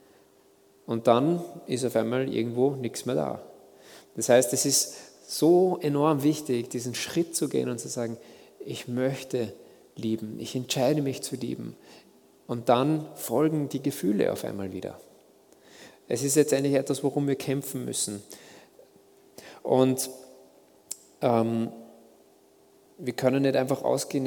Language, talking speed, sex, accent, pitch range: German, 135 wpm, male, German, 120-135 Hz